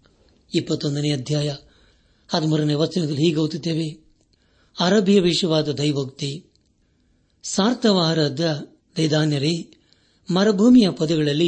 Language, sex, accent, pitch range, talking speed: Kannada, male, native, 140-180 Hz, 70 wpm